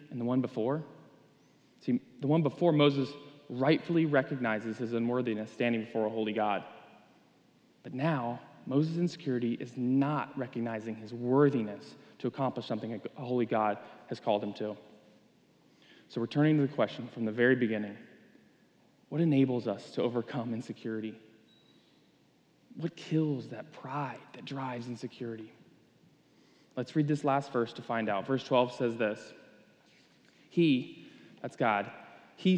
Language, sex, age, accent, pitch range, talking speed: English, male, 20-39, American, 115-145 Hz, 140 wpm